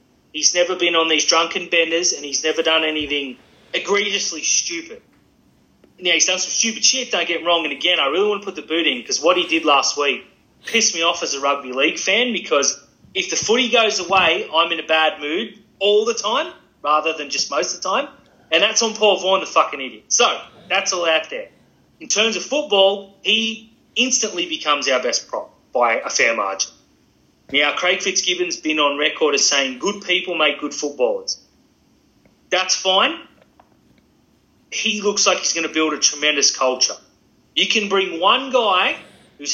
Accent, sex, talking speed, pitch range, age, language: Australian, male, 195 wpm, 155-215 Hz, 30-49, English